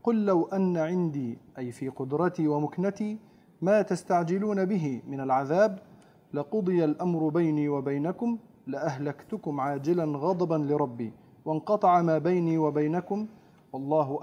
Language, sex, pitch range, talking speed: Arabic, male, 150-190 Hz, 110 wpm